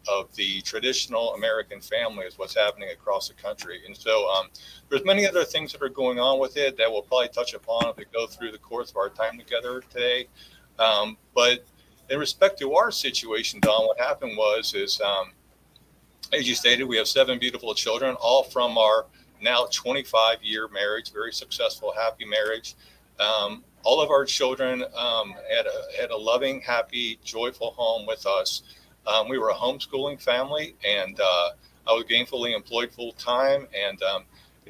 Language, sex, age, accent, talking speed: English, male, 40-59, American, 185 wpm